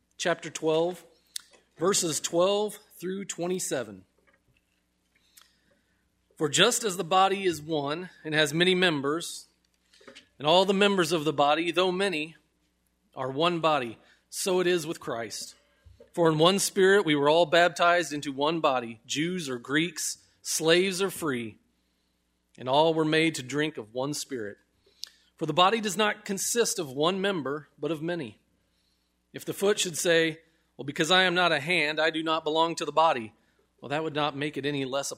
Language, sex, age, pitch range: English, male, 40-59, 140-175 Hz